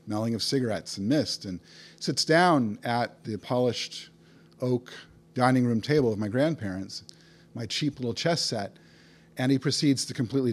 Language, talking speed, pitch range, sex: English, 155 wpm, 105-135 Hz, male